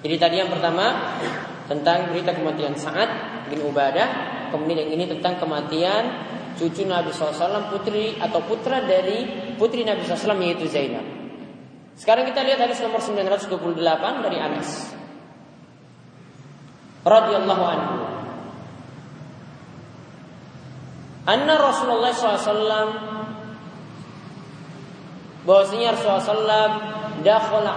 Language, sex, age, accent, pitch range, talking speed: Indonesian, male, 20-39, native, 170-215 Hz, 95 wpm